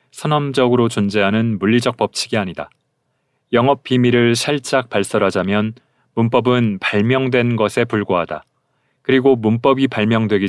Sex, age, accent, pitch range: male, 40-59, native, 110-135 Hz